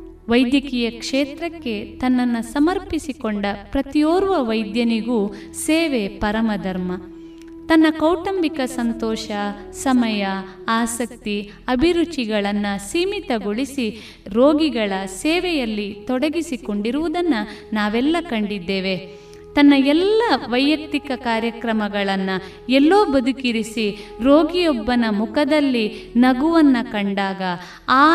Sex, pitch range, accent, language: female, 210-300 Hz, native, Kannada